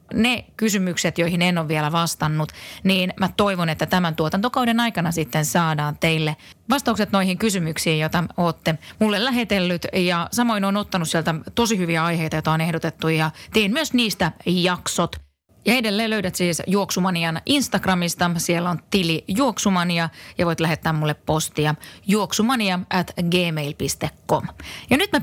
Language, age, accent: Finnish, 30-49, native